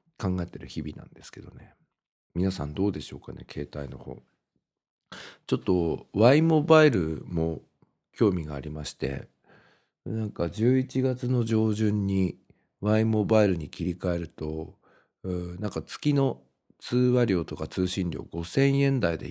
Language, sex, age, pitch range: Japanese, male, 50-69, 80-110 Hz